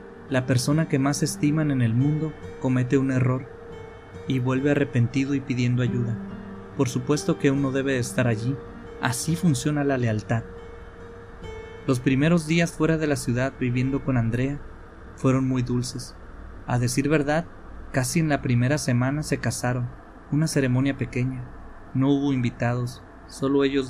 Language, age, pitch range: Spanish, 30-49, 120-140 Hz